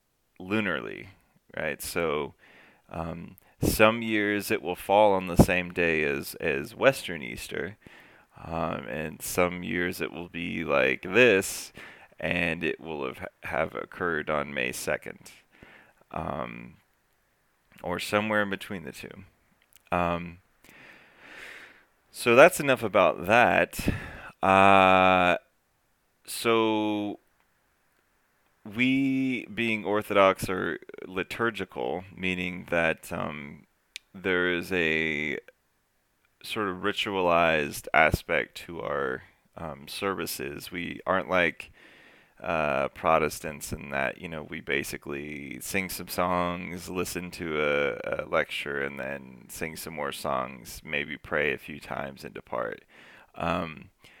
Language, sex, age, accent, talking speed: English, male, 30-49, American, 115 wpm